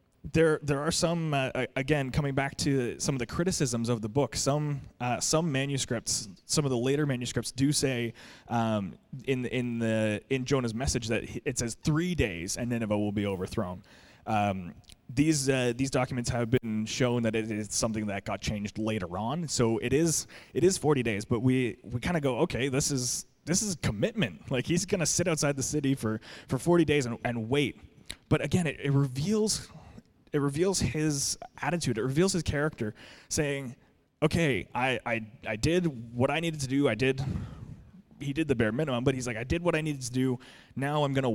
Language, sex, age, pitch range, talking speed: English, male, 20-39, 115-150 Hz, 200 wpm